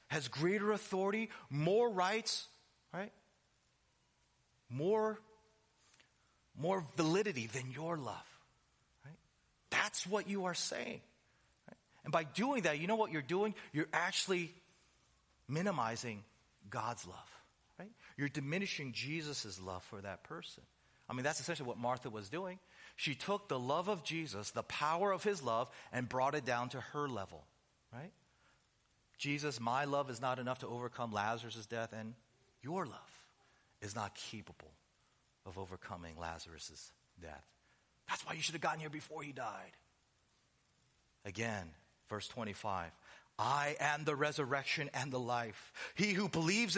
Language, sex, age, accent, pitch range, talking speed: English, male, 40-59, American, 115-185 Hz, 140 wpm